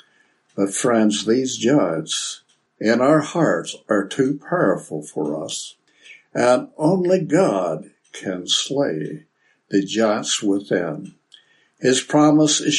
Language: English